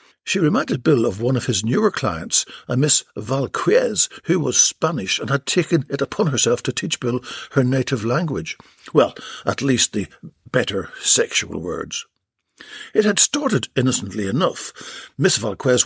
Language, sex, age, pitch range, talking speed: English, male, 60-79, 120-160 Hz, 155 wpm